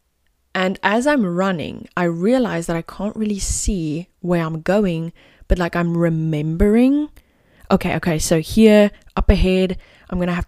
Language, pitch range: English, 165-205 Hz